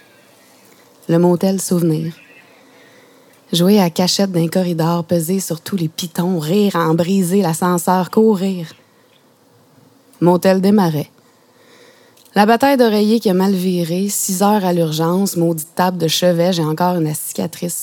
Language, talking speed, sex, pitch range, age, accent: French, 140 wpm, female, 165-200 Hz, 20-39, Canadian